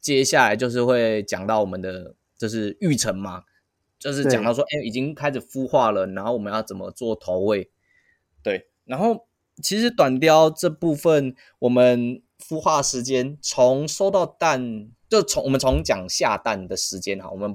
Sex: male